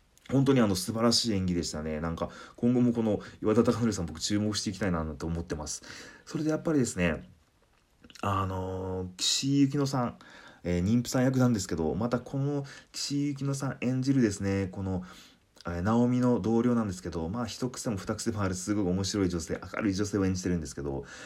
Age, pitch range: 30-49, 85-115 Hz